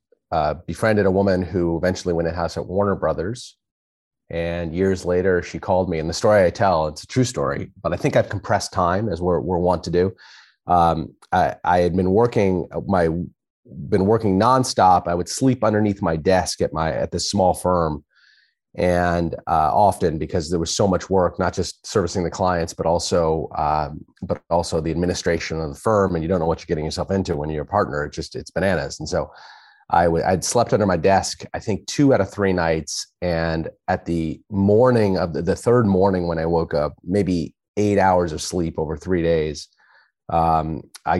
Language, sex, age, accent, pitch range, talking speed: English, male, 30-49, American, 80-95 Hz, 200 wpm